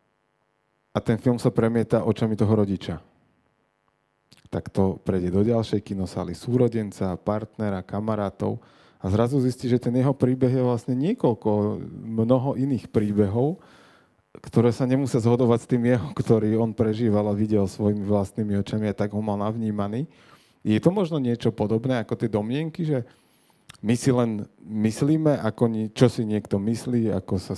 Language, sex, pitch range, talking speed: Slovak, male, 105-125 Hz, 155 wpm